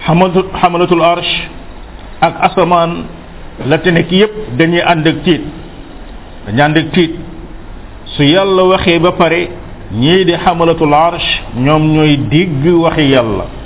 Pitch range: 120-170 Hz